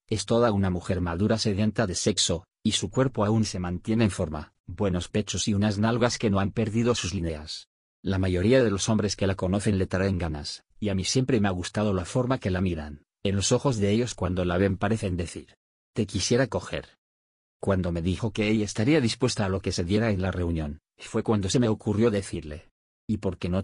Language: Spanish